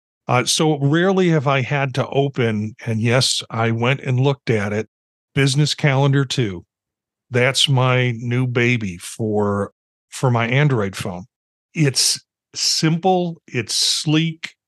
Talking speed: 130 wpm